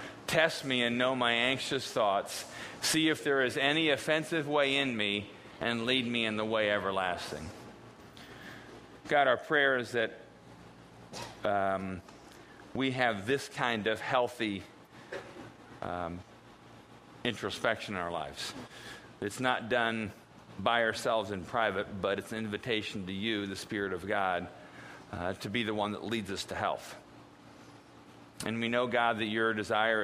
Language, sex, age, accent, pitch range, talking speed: English, male, 50-69, American, 100-125 Hz, 150 wpm